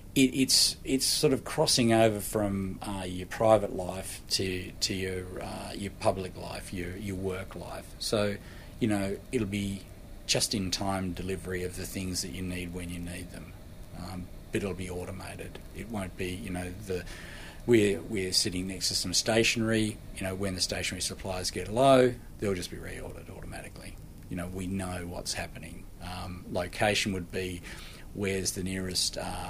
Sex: male